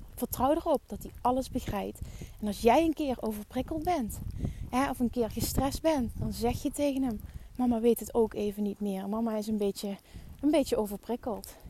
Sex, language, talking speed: female, Dutch, 185 wpm